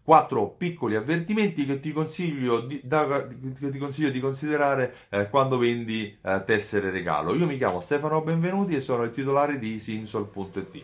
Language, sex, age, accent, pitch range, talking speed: Italian, male, 30-49, native, 105-170 Hz, 145 wpm